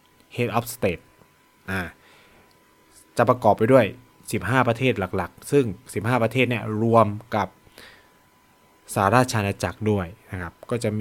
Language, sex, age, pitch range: Thai, male, 20-39, 100-125 Hz